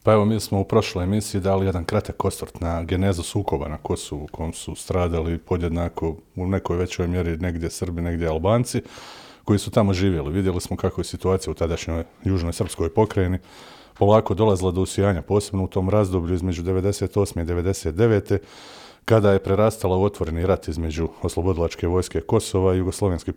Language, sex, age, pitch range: Croatian, male, 40-59, 85-100 Hz